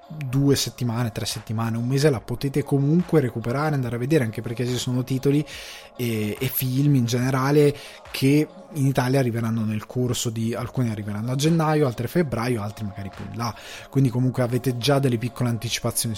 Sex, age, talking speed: male, 20-39, 180 wpm